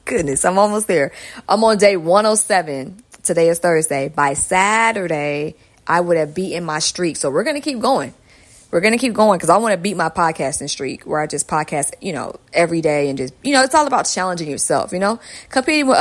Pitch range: 155-215 Hz